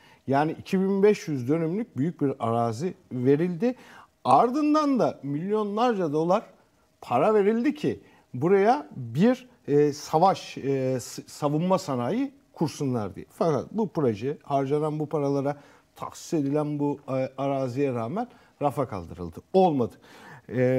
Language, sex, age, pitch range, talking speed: Turkish, male, 50-69, 125-190 Hz, 100 wpm